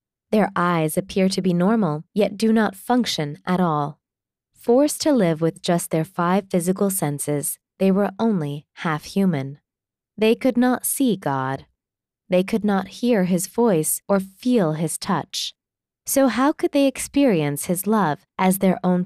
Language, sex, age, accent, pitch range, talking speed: English, female, 20-39, American, 160-215 Hz, 160 wpm